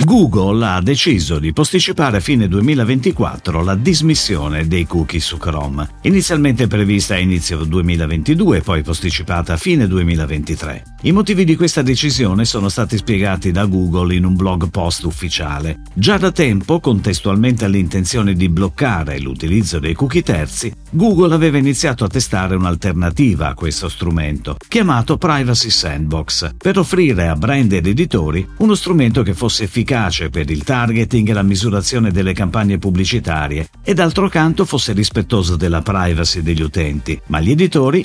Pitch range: 85-130 Hz